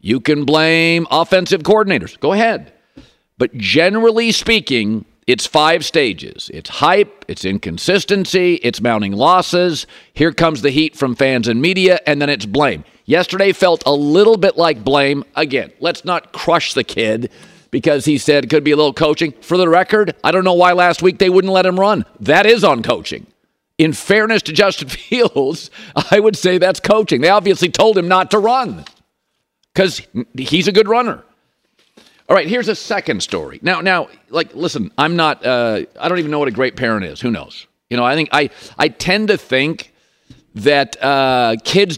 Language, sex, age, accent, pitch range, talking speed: English, male, 50-69, American, 130-185 Hz, 185 wpm